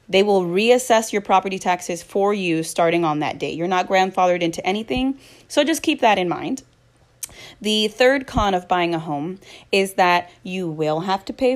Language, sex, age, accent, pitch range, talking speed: English, female, 20-39, American, 170-245 Hz, 190 wpm